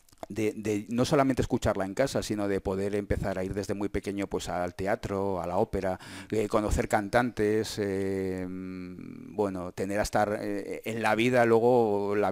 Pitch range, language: 95-115 Hz, English